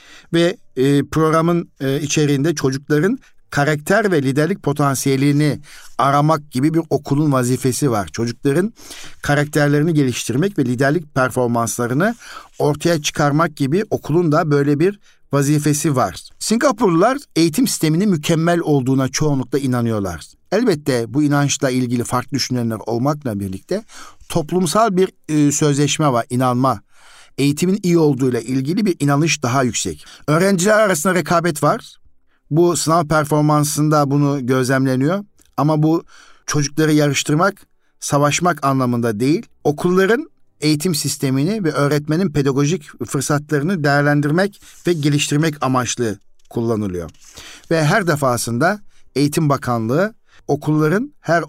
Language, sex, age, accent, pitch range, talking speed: Turkish, male, 60-79, native, 130-165 Hz, 105 wpm